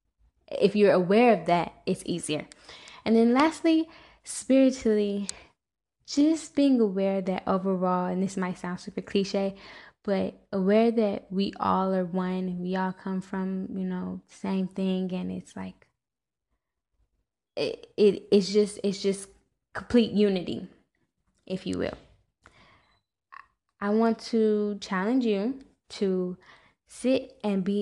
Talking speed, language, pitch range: 130 wpm, English, 180-220 Hz